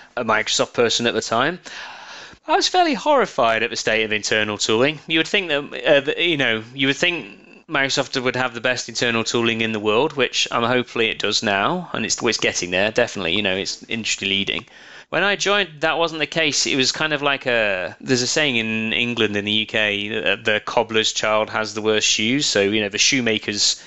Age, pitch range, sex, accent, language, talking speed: 30-49, 100-120 Hz, male, British, English, 215 wpm